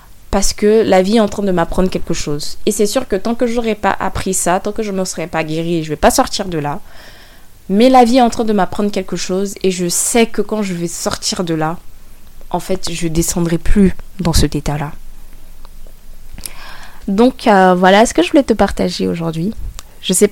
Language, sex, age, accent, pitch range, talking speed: French, female, 20-39, French, 165-215 Hz, 235 wpm